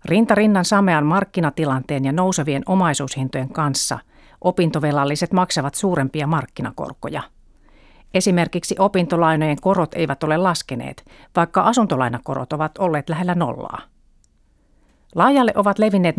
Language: Finnish